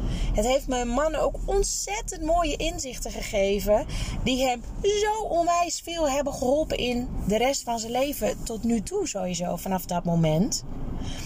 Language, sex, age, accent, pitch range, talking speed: Dutch, female, 20-39, Dutch, 210-300 Hz, 155 wpm